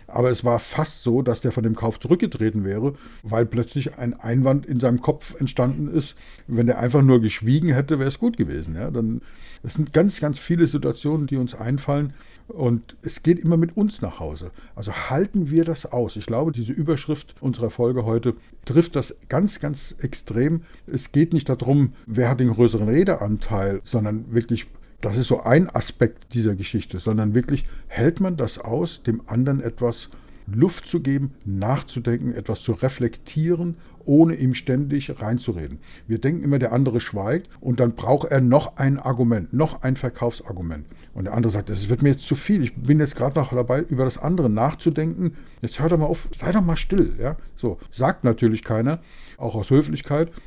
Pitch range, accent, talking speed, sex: 115-150 Hz, German, 185 wpm, male